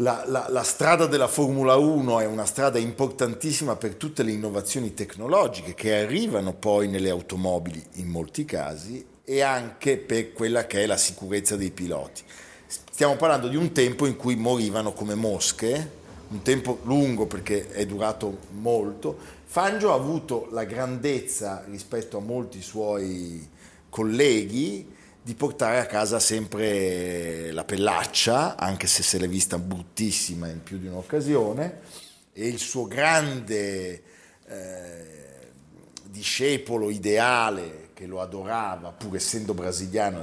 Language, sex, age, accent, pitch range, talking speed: Italian, male, 50-69, native, 95-125 Hz, 135 wpm